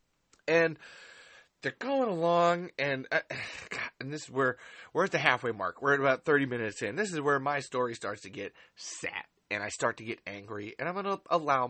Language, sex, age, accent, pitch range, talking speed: English, male, 30-49, American, 135-200 Hz, 210 wpm